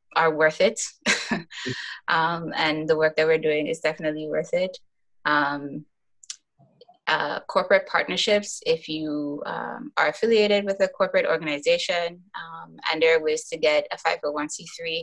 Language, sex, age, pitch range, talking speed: English, female, 20-39, 155-200 Hz, 145 wpm